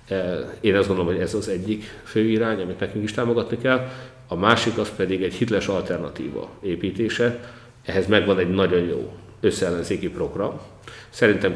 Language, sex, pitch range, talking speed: Hungarian, male, 90-110 Hz, 155 wpm